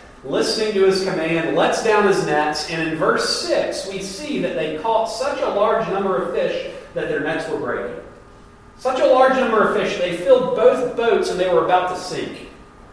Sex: male